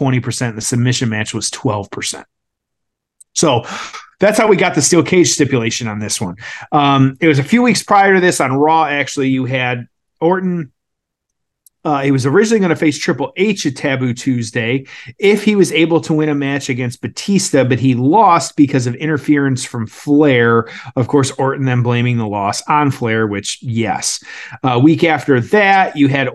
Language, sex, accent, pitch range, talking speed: English, male, American, 125-155 Hz, 180 wpm